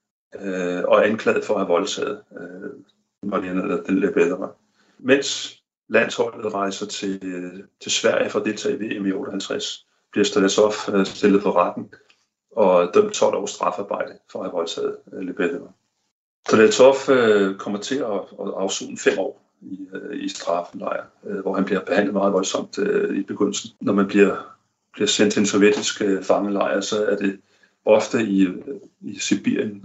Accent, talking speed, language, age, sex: native, 140 wpm, Danish, 40-59, male